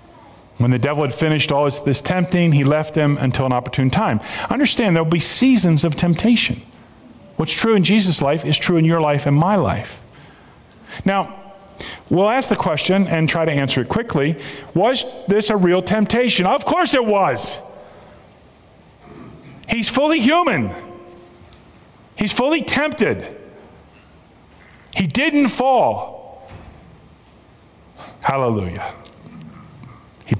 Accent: American